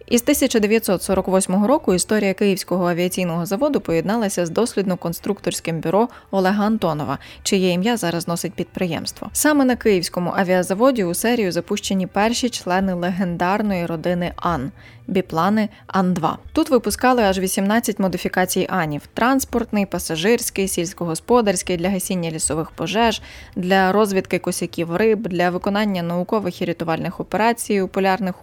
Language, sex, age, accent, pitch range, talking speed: Ukrainian, female, 20-39, native, 175-210 Hz, 125 wpm